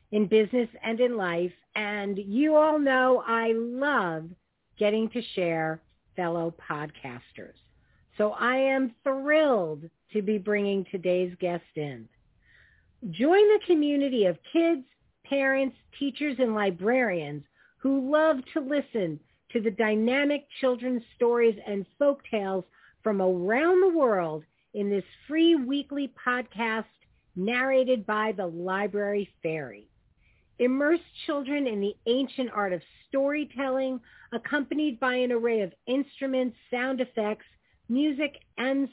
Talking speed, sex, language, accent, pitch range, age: 120 wpm, female, English, American, 200-275 Hz, 50-69